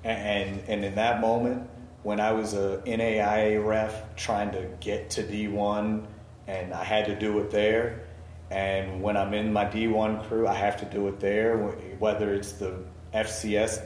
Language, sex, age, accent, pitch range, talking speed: English, male, 40-59, American, 95-115 Hz, 175 wpm